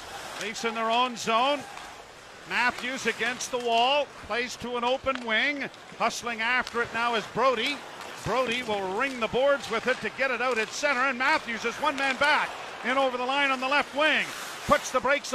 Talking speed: 195 wpm